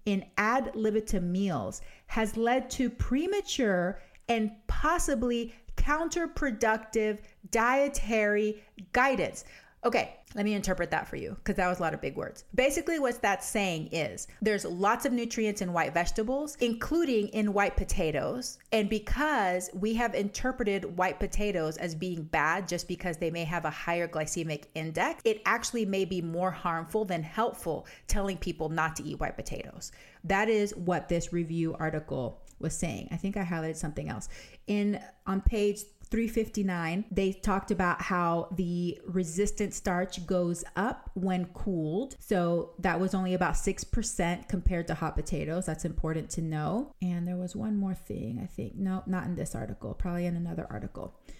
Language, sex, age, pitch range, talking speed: English, female, 30-49, 175-220 Hz, 165 wpm